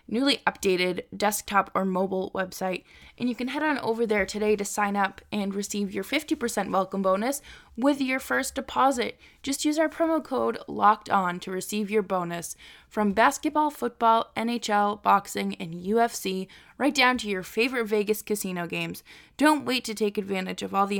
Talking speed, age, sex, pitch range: 175 wpm, 20-39, female, 190-245 Hz